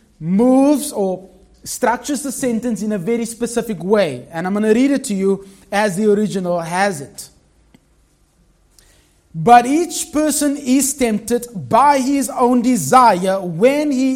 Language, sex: English, male